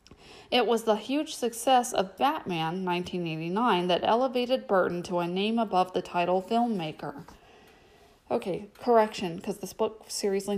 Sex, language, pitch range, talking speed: female, English, 185-225 Hz, 135 wpm